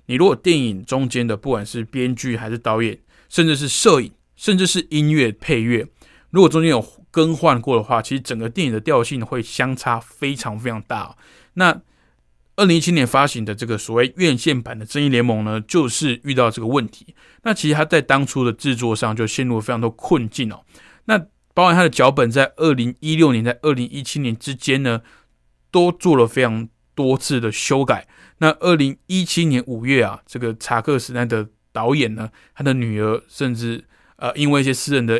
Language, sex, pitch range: Chinese, male, 115-145 Hz